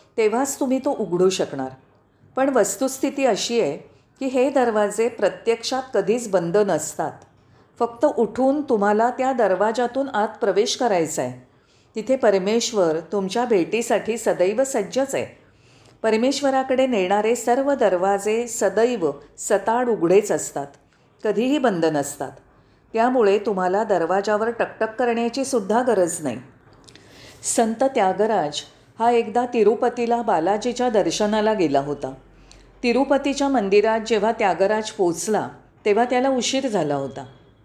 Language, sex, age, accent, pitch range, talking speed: Marathi, female, 40-59, native, 185-240 Hz, 105 wpm